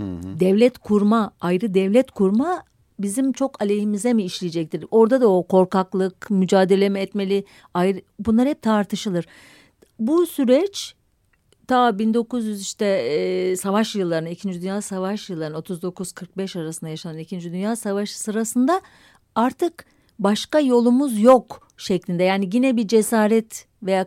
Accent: native